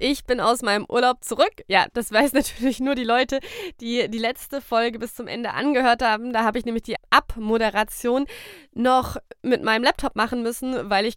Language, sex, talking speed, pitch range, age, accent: German, female, 195 wpm, 235-290 Hz, 20-39, German